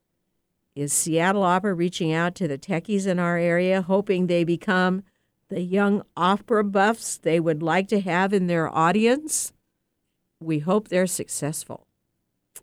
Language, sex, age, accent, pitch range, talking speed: English, female, 60-79, American, 165-210 Hz, 145 wpm